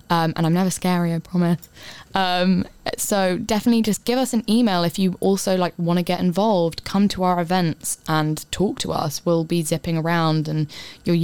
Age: 10-29